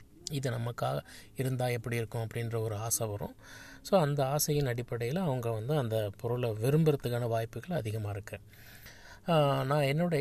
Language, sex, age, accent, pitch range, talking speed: Tamil, male, 20-39, native, 110-135 Hz, 135 wpm